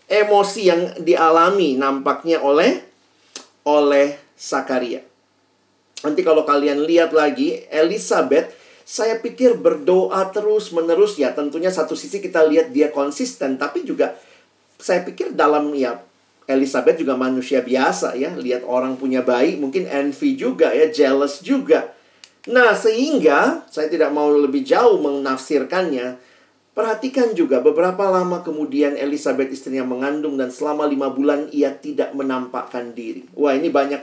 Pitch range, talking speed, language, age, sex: 140-190 Hz, 130 wpm, Indonesian, 40-59, male